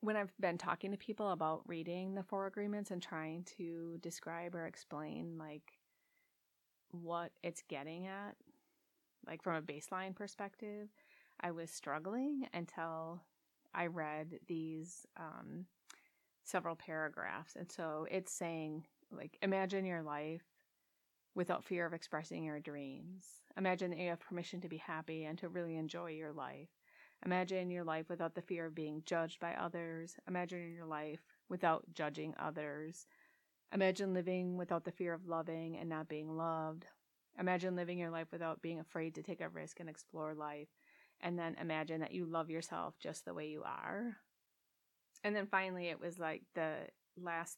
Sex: female